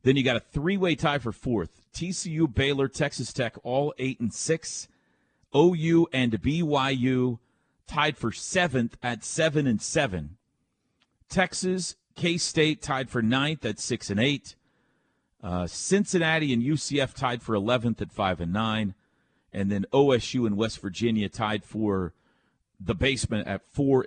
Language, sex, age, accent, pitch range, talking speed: English, male, 40-59, American, 100-130 Hz, 145 wpm